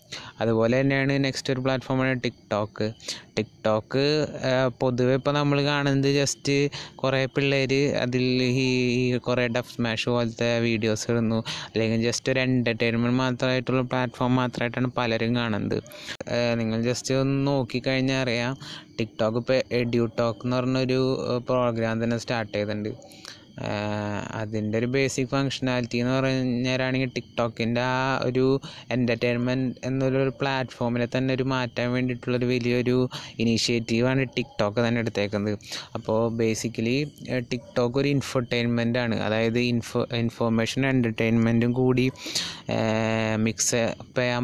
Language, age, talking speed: Malayalam, 20-39, 105 wpm